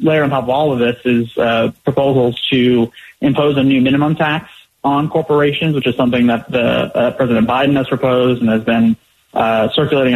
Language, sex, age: English, male, 30-49